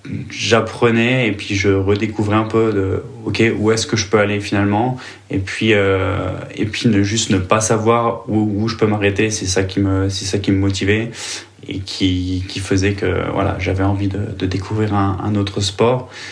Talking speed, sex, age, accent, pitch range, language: 200 wpm, male, 20-39, French, 95-110 Hz, French